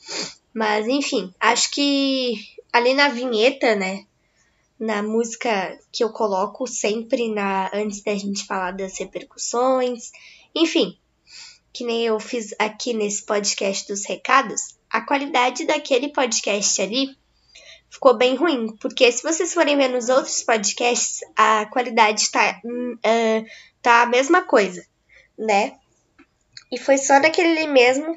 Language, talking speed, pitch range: Portuguese, 130 wpm, 225-270 Hz